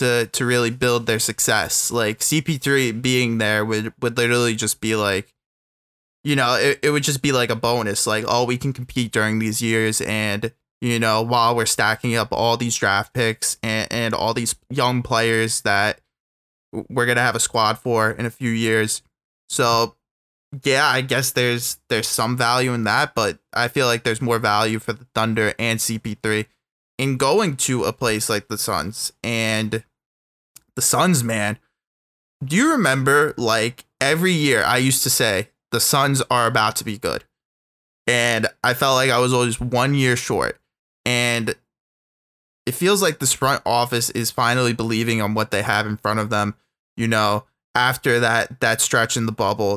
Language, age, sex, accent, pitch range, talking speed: English, 20-39, male, American, 110-125 Hz, 180 wpm